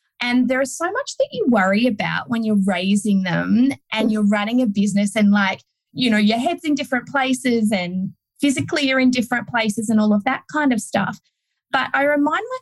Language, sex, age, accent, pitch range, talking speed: English, female, 20-39, Australian, 190-245 Hz, 210 wpm